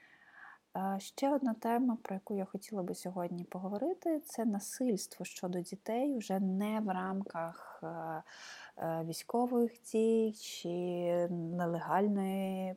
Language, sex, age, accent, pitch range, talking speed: Ukrainian, female, 20-39, native, 180-225 Hz, 110 wpm